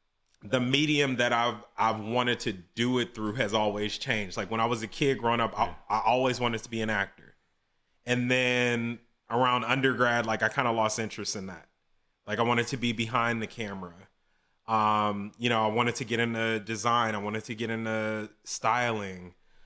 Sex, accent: male, American